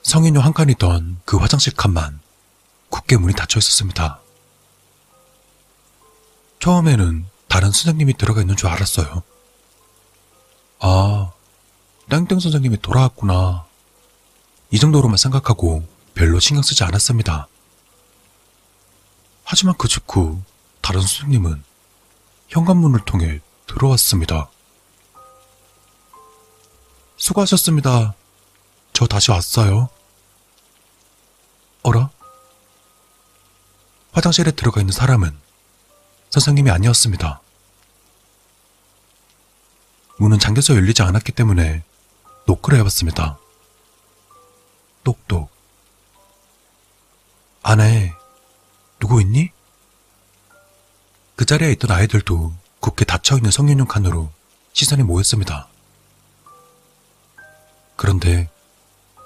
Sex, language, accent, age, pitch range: male, Korean, native, 40-59, 90-120 Hz